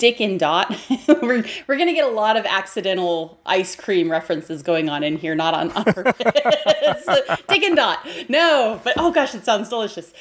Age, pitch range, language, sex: 30-49, 170-260 Hz, English, female